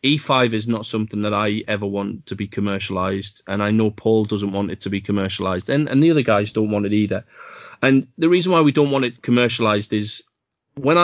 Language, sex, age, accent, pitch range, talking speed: English, male, 30-49, British, 100-125 Hz, 225 wpm